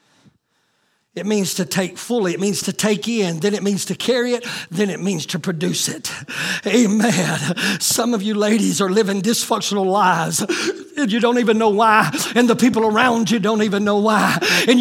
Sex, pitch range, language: male, 230-360 Hz, English